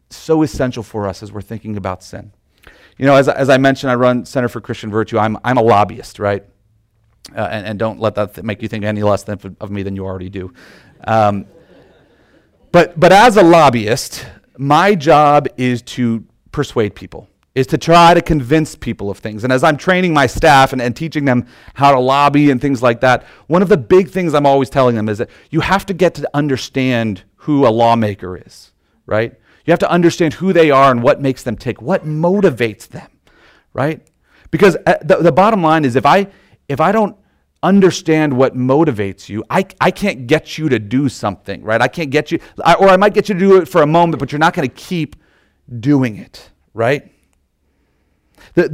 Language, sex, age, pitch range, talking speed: English, male, 40-59, 110-160 Hz, 210 wpm